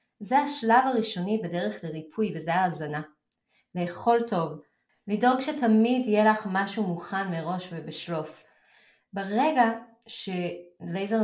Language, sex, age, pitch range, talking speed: Hebrew, female, 20-39, 175-240 Hz, 100 wpm